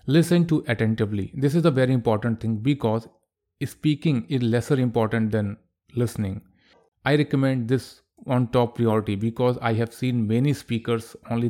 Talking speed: 150 wpm